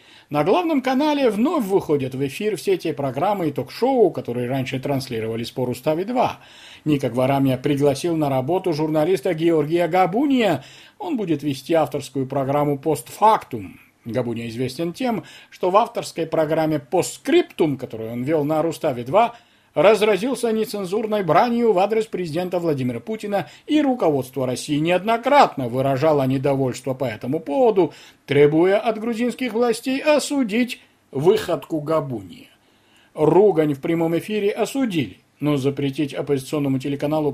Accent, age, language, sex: native, 40-59, Russian, male